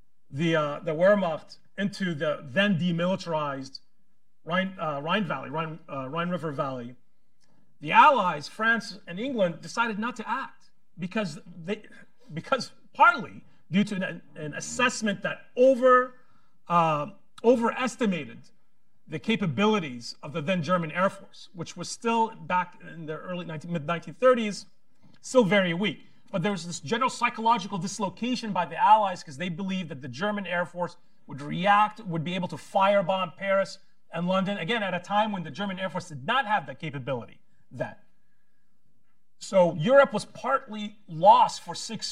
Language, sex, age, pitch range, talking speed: English, male, 40-59, 165-210 Hz, 150 wpm